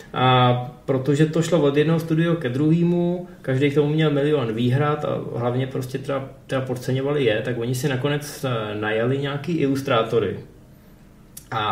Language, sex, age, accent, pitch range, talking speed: Czech, male, 20-39, native, 125-150 Hz, 155 wpm